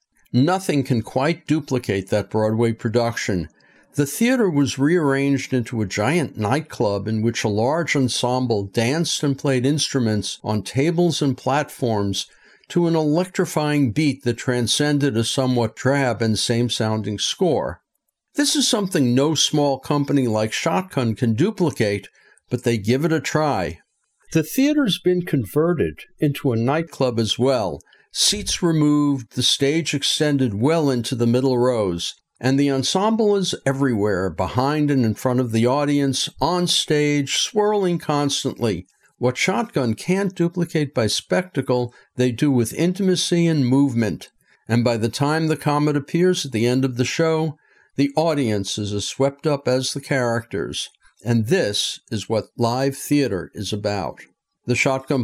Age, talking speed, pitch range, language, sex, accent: 60-79, 145 wpm, 115-150 Hz, English, male, American